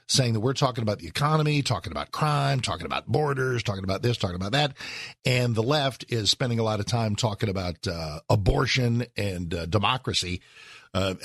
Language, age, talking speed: English, 50-69, 190 wpm